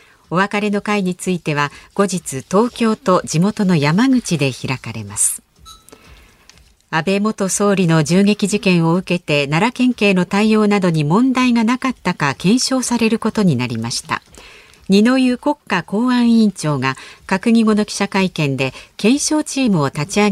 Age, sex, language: 50-69, female, Japanese